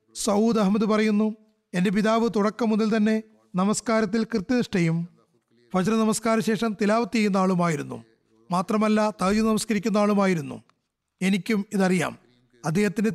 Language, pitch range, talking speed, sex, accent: Malayalam, 185-220 Hz, 105 wpm, male, native